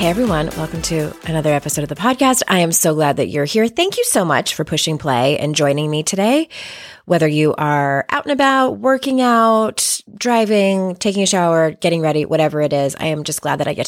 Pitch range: 150-200 Hz